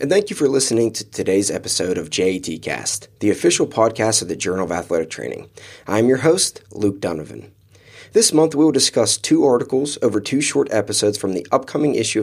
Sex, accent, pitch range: male, American, 100-135 Hz